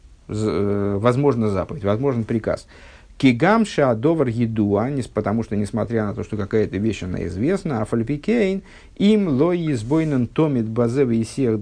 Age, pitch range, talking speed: 50-69, 105-145 Hz, 130 wpm